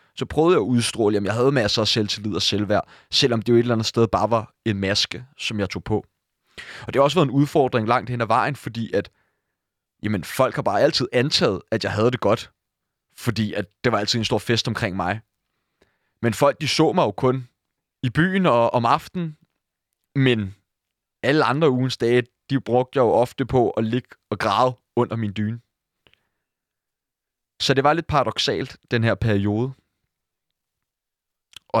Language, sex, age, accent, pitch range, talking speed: Danish, male, 30-49, native, 100-125 Hz, 190 wpm